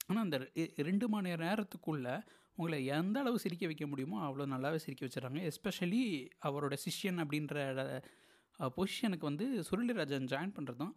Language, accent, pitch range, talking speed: Tamil, native, 145-205 Hz, 135 wpm